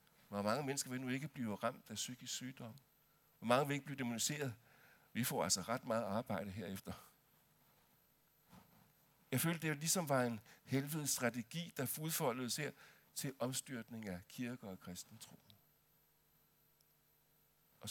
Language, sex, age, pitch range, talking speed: Danish, male, 60-79, 110-150 Hz, 140 wpm